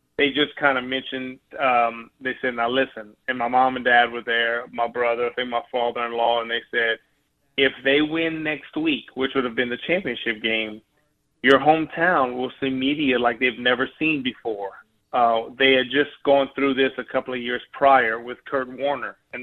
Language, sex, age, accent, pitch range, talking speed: English, male, 30-49, American, 120-140 Hz, 200 wpm